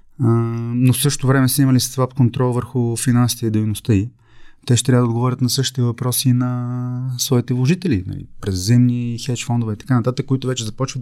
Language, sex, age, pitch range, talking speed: English, male, 20-39, 115-140 Hz, 185 wpm